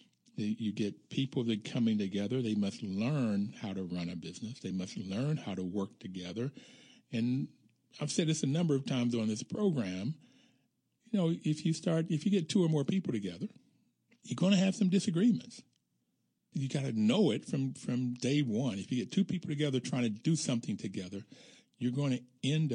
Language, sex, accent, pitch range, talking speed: English, male, American, 105-150 Hz, 200 wpm